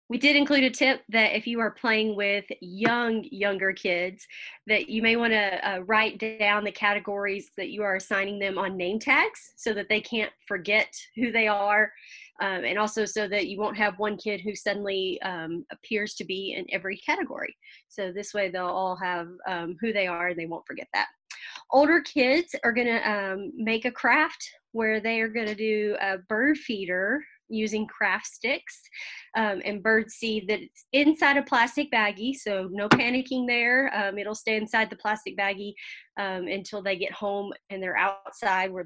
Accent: American